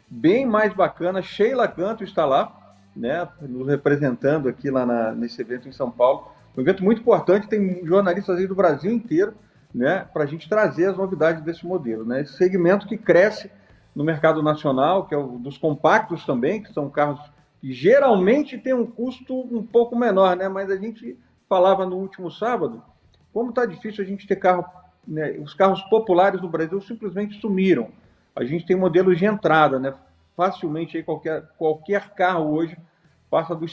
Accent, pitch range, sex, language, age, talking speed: Brazilian, 160-215 Hz, male, Portuguese, 40-59, 180 wpm